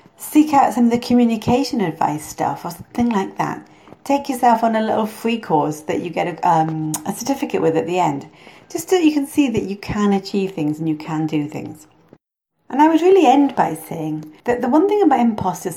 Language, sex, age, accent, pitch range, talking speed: English, female, 40-59, British, 155-230 Hz, 220 wpm